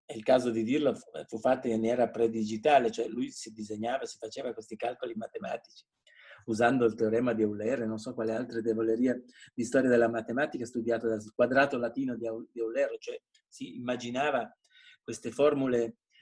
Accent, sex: native, male